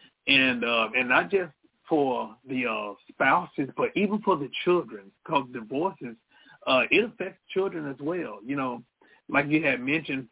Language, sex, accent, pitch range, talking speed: English, male, American, 115-150 Hz, 165 wpm